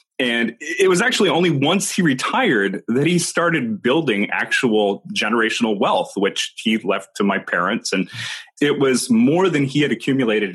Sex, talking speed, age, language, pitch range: male, 165 wpm, 30-49, English, 110-165 Hz